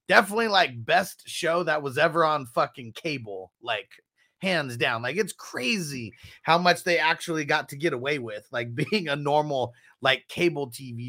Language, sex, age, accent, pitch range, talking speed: English, male, 30-49, American, 125-175 Hz, 175 wpm